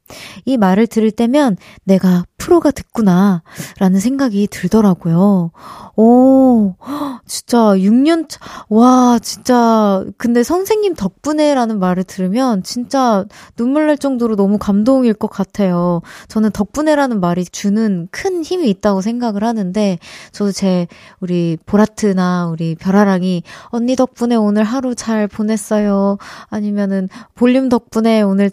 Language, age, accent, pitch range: Korean, 20-39, native, 190-255 Hz